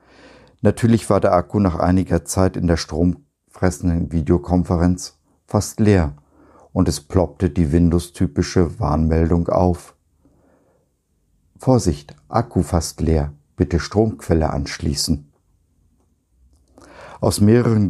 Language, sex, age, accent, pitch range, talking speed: German, male, 50-69, German, 80-95 Hz, 95 wpm